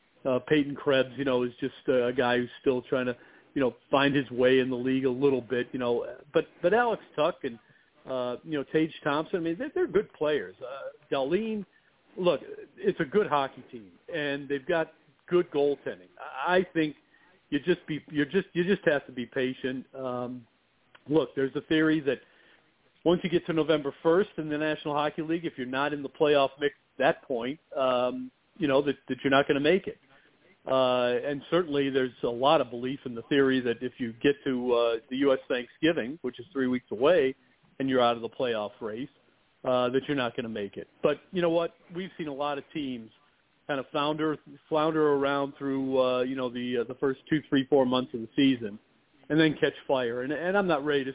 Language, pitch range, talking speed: English, 125-155 Hz, 220 wpm